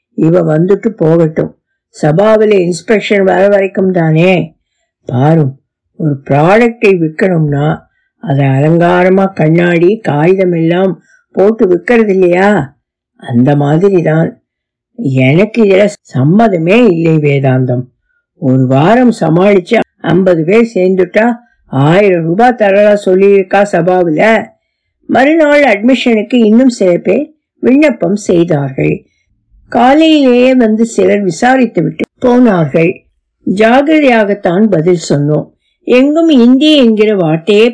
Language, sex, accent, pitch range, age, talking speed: Tamil, female, native, 170-240 Hz, 50-69, 60 wpm